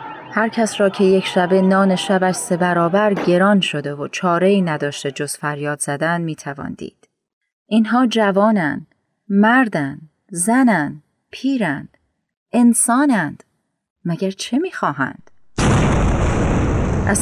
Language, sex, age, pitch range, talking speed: Persian, female, 30-49, 165-210 Hz, 100 wpm